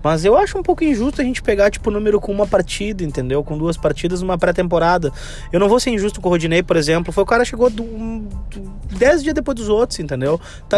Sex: male